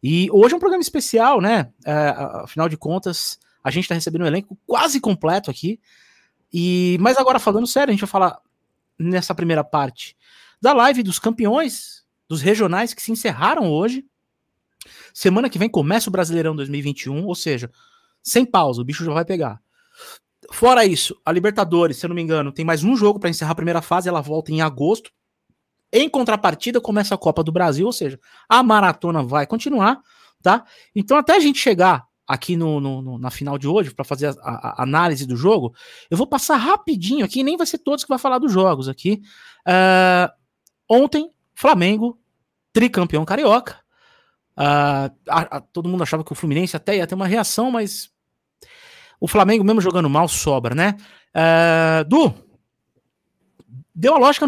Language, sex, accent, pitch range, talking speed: Portuguese, male, Brazilian, 160-240 Hz, 175 wpm